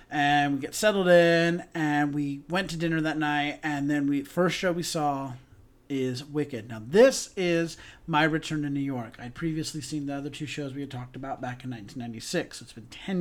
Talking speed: 210 wpm